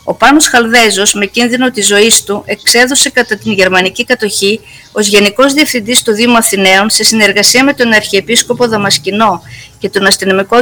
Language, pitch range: Greek, 205-240 Hz